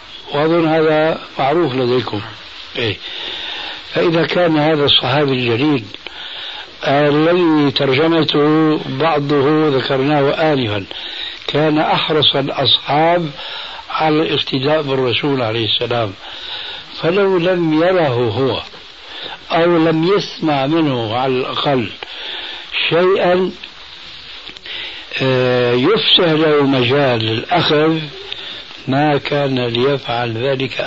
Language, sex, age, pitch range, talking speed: Arabic, male, 60-79, 135-165 Hz, 80 wpm